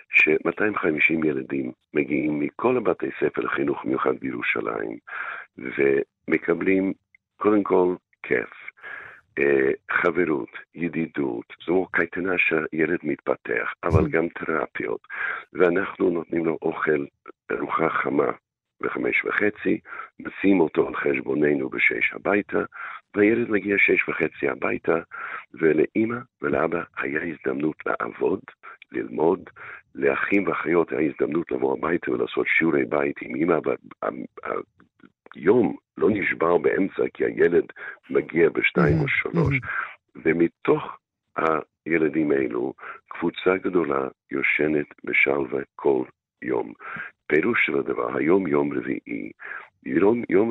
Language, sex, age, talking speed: Hebrew, male, 60-79, 95 wpm